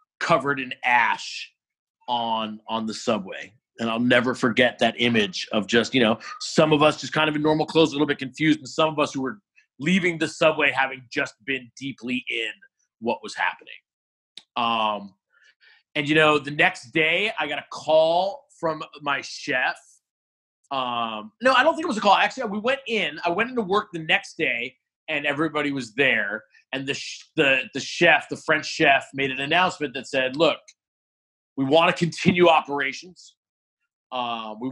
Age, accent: 30-49, American